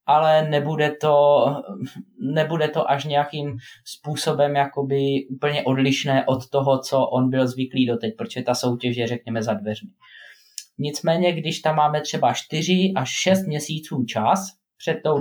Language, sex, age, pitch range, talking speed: Slovak, male, 20-39, 125-155 Hz, 145 wpm